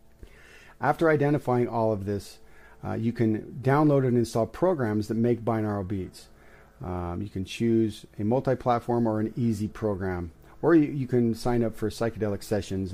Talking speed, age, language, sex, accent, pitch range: 160 wpm, 40-59, English, male, American, 105-130 Hz